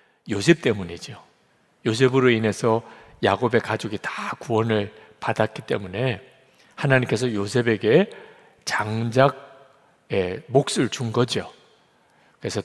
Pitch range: 110-140 Hz